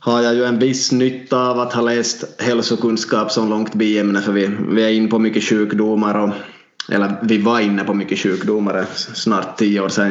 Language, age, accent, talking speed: Swedish, 20-39, Finnish, 195 wpm